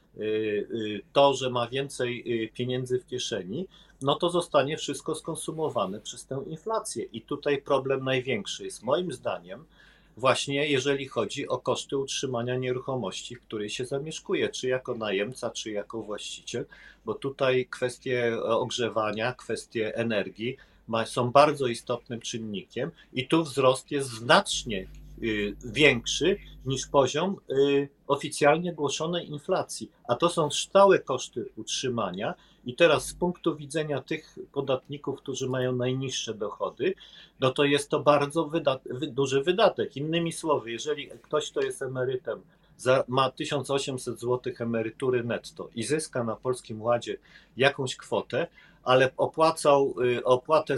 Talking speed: 130 wpm